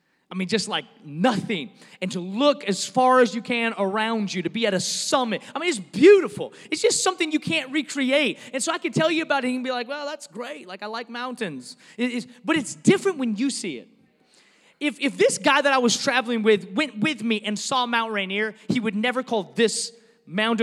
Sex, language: male, English